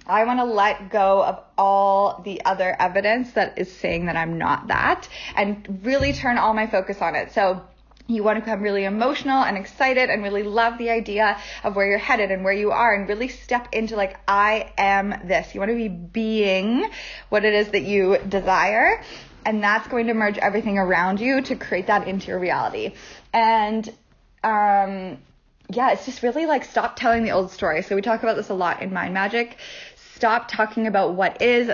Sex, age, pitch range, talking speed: female, 20-39, 195-235 Hz, 200 wpm